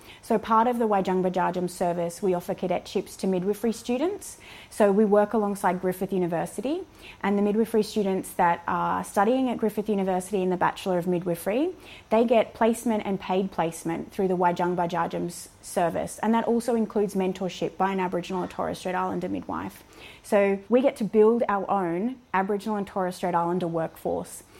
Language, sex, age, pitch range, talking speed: English, female, 20-39, 185-225 Hz, 175 wpm